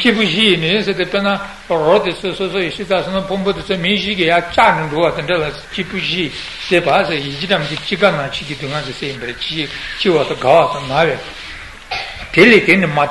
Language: Italian